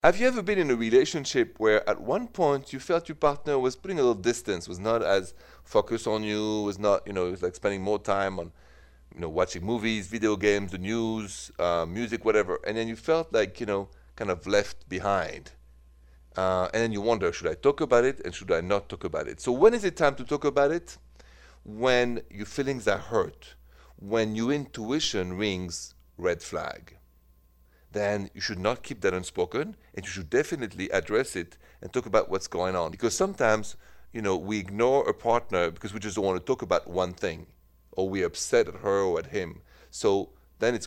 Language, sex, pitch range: English, male, 90-135 Hz